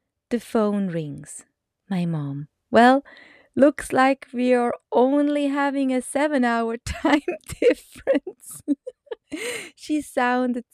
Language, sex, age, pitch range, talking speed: English, female, 20-39, 185-265 Hz, 105 wpm